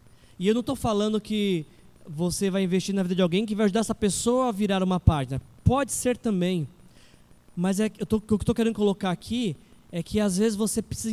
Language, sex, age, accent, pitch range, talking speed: Portuguese, male, 20-39, Brazilian, 180-230 Hz, 225 wpm